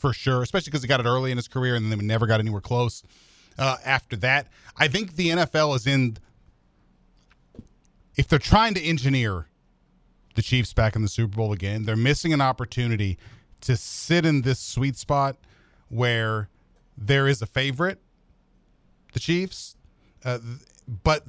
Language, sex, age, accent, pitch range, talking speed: English, male, 40-59, American, 110-150 Hz, 165 wpm